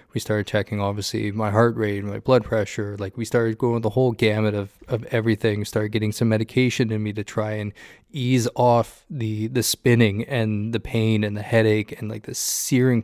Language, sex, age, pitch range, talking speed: English, male, 20-39, 105-120 Hz, 215 wpm